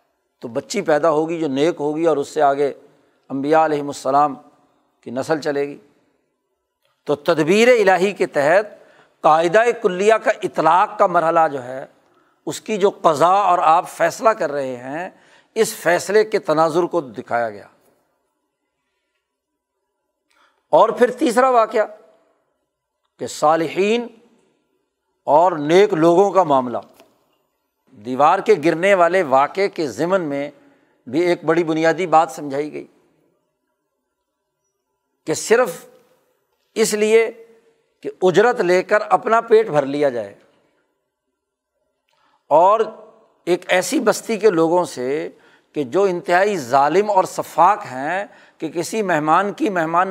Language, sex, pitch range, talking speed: Urdu, male, 155-215 Hz, 125 wpm